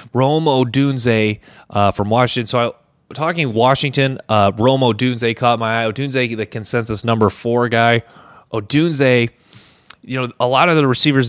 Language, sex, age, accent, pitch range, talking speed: English, male, 30-49, American, 105-125 Hz, 150 wpm